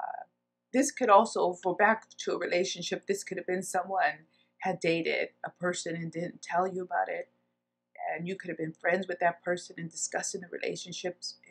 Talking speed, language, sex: 195 wpm, English, female